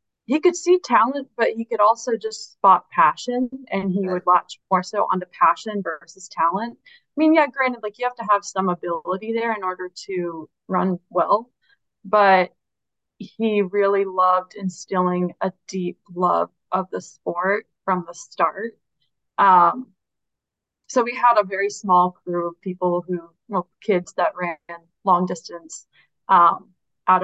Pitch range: 180-215 Hz